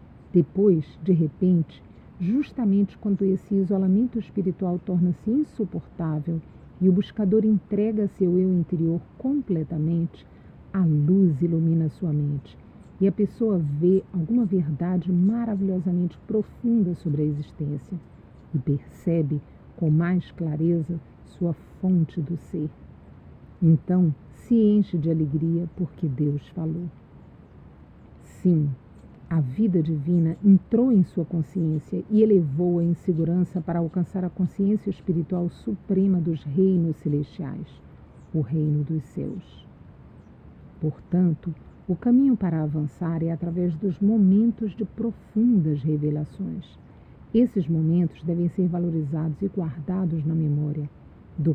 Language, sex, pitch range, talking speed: Portuguese, female, 155-195 Hz, 115 wpm